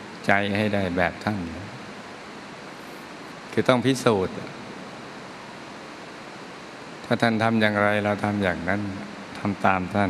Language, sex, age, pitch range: Thai, male, 60-79, 95-105 Hz